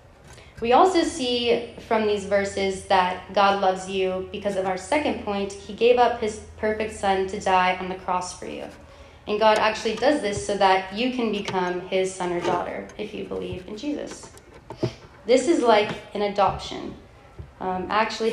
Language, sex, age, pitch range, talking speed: English, female, 20-39, 190-220 Hz, 180 wpm